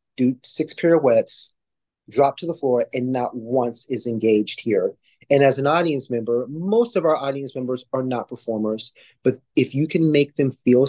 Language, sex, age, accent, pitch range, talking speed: English, male, 30-49, American, 120-145 Hz, 180 wpm